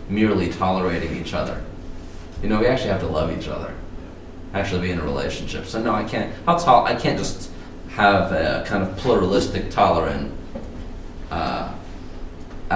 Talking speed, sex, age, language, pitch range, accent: 150 wpm, male, 20-39, English, 85-100 Hz, American